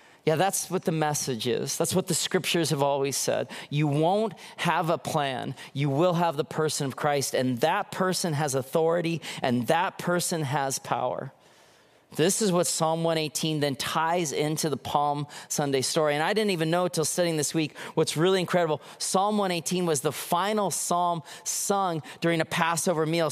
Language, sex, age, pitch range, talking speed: English, male, 30-49, 140-170 Hz, 180 wpm